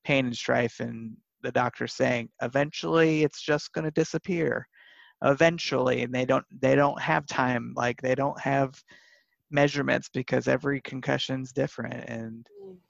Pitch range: 125-140 Hz